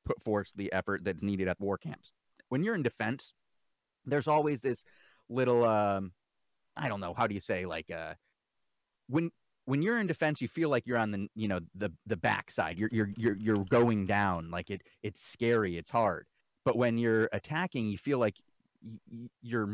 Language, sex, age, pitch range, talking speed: English, male, 30-49, 100-135 Hz, 195 wpm